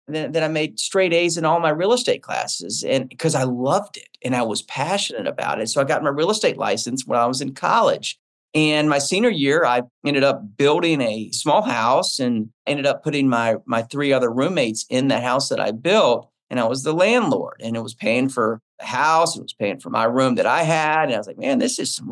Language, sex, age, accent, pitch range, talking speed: English, male, 40-59, American, 125-165 Hz, 240 wpm